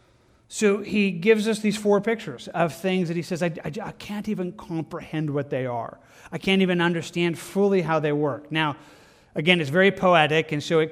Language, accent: English, American